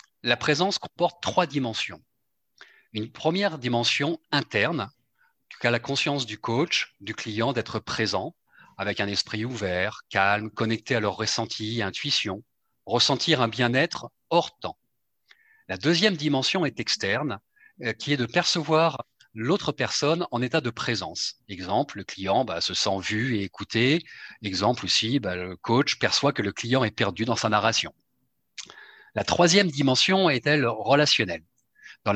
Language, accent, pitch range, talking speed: French, French, 110-150 Hz, 145 wpm